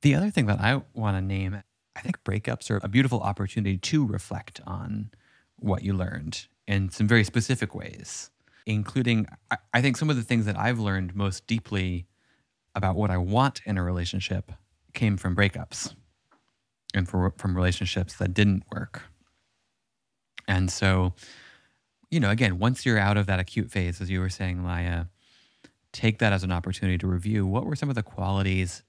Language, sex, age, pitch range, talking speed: English, male, 30-49, 90-115 Hz, 175 wpm